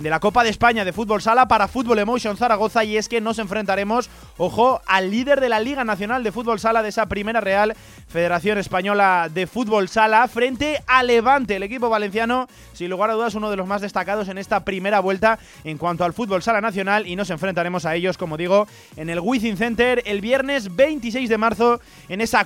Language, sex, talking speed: Spanish, male, 210 wpm